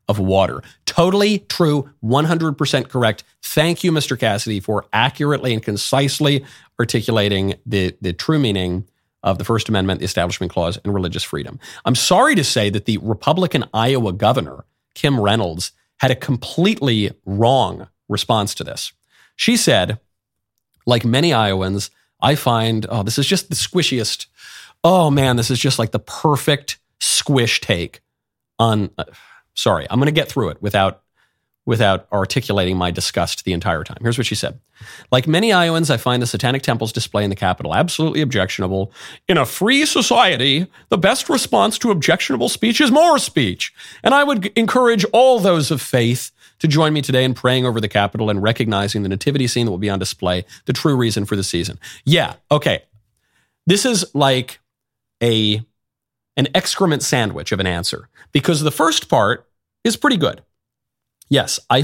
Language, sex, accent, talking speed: English, male, American, 165 wpm